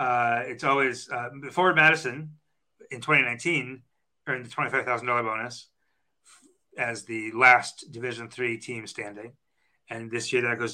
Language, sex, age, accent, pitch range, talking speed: English, male, 30-49, American, 120-140 Hz, 140 wpm